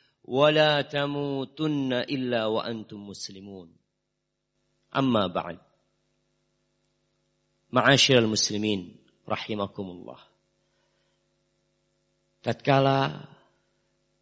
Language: Indonesian